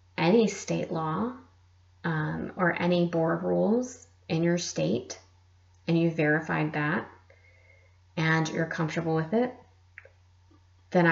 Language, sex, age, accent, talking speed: English, female, 30-49, American, 115 wpm